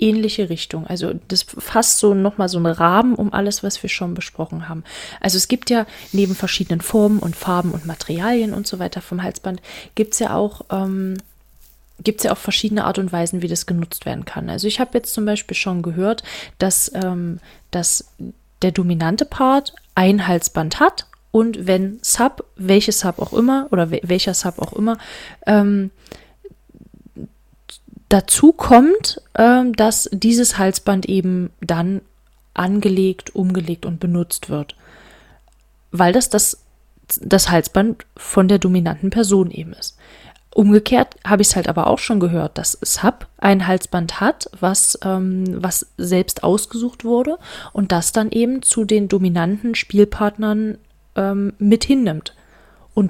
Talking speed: 150 wpm